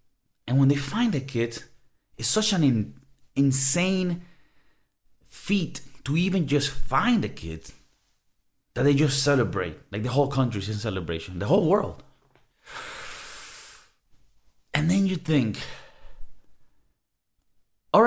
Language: English